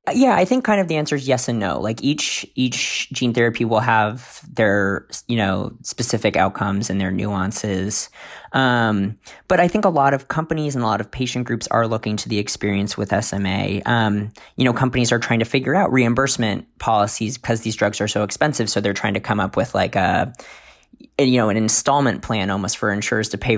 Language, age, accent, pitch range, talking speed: English, 20-39, American, 105-125 Hz, 210 wpm